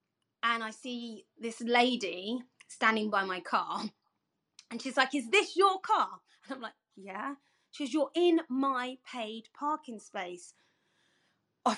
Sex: female